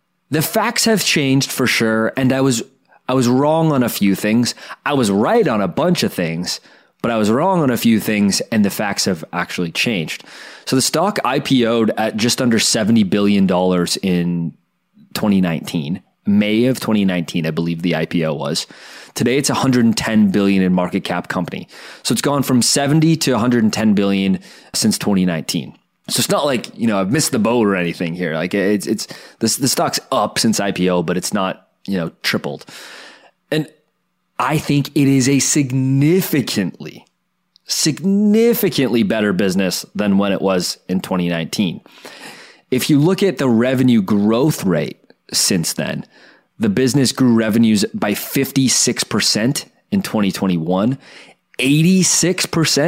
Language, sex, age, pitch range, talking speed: English, male, 20-39, 95-140 Hz, 155 wpm